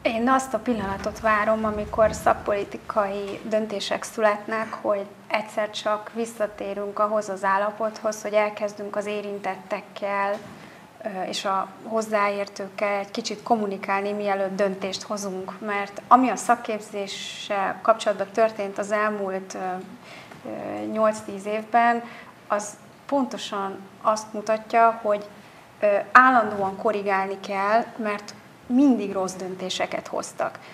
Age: 30-49